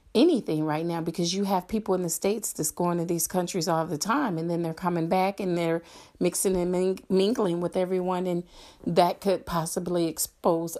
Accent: American